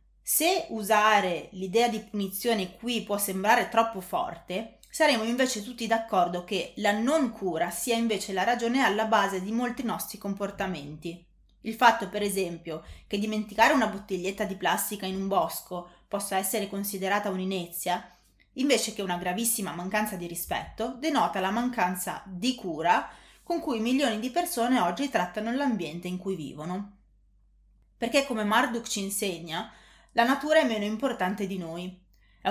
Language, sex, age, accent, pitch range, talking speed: Italian, female, 20-39, native, 180-235 Hz, 150 wpm